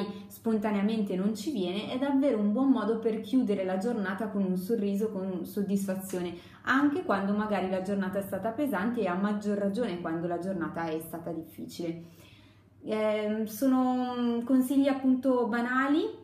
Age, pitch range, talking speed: 20-39, 185-225 Hz, 150 wpm